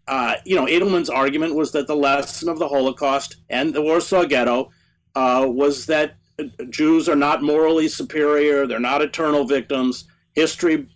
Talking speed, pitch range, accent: 160 wpm, 125-155 Hz, American